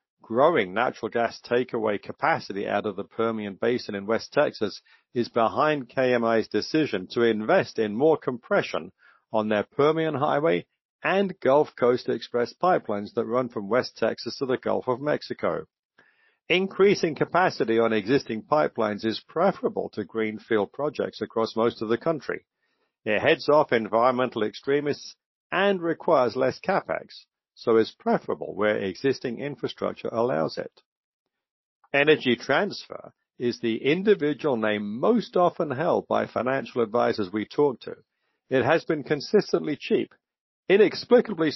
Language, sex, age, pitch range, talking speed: English, male, 50-69, 110-155 Hz, 135 wpm